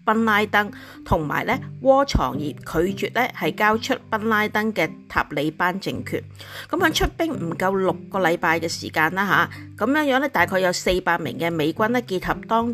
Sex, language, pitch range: female, Chinese, 165-225 Hz